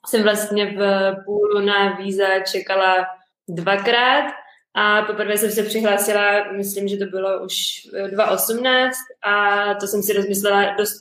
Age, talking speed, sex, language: 20-39, 135 wpm, female, Czech